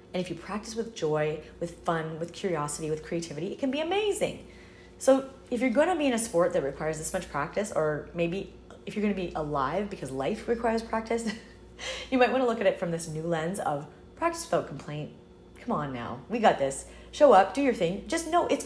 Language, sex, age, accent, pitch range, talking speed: English, female, 30-49, American, 160-225 Hz, 230 wpm